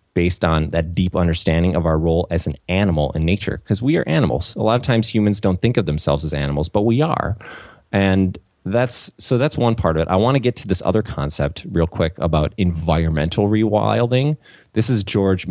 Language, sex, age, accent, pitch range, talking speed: English, male, 30-49, American, 80-105 Hz, 215 wpm